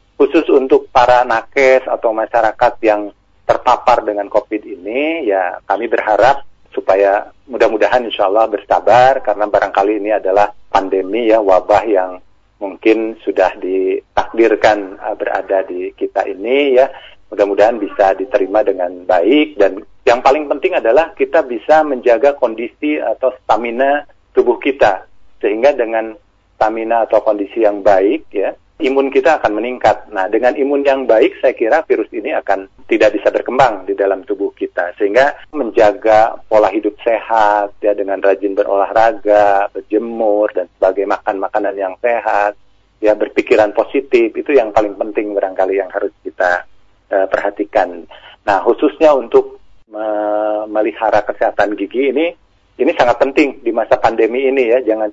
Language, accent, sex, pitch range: Indonesian, native, male, 100-140 Hz